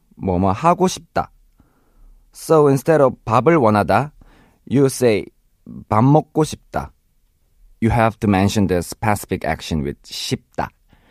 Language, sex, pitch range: Korean, male, 95-140 Hz